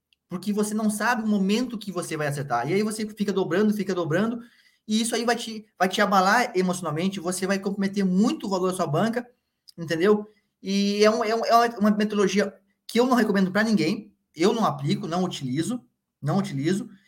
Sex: male